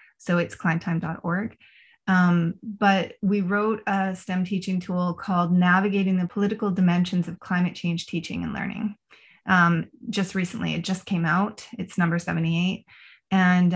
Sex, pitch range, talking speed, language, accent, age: female, 175-205 Hz, 140 wpm, English, American, 30-49